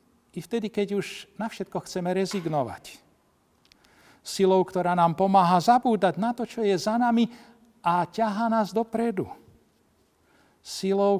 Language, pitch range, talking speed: Slovak, 140-175 Hz, 130 wpm